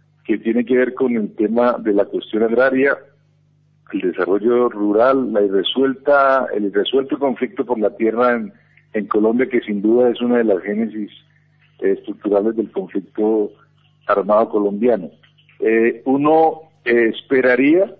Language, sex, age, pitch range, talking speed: Spanish, male, 50-69, 110-140 Hz, 135 wpm